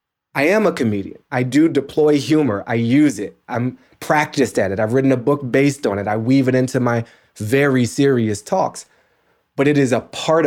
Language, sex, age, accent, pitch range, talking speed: English, male, 20-39, American, 110-135 Hz, 200 wpm